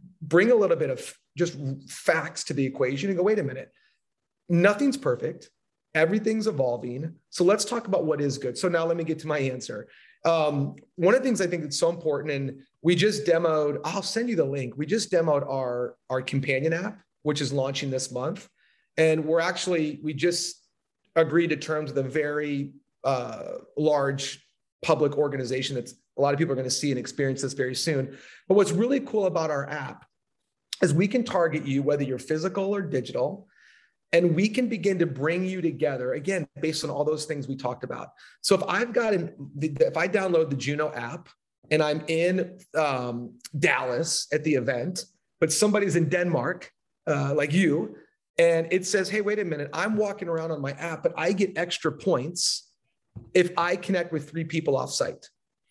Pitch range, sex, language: 140-185 Hz, male, English